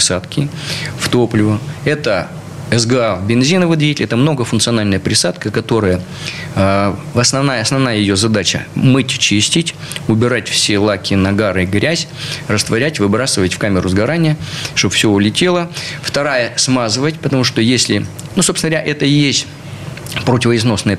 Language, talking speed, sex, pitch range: Russian, 125 wpm, male, 105-140 Hz